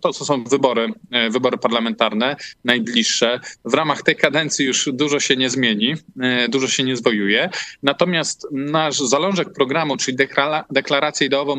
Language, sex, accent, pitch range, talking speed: Polish, male, native, 125-155 Hz, 140 wpm